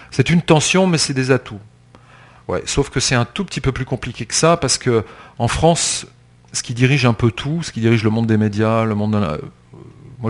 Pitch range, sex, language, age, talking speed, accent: 100-130 Hz, male, French, 40-59, 215 wpm, French